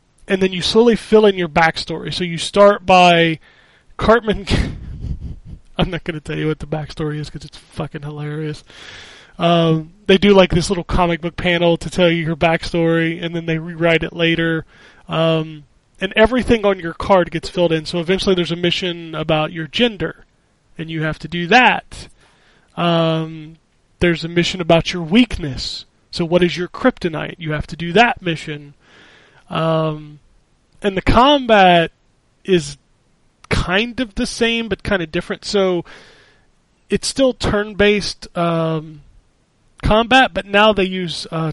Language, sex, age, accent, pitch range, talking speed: English, male, 20-39, American, 155-185 Hz, 160 wpm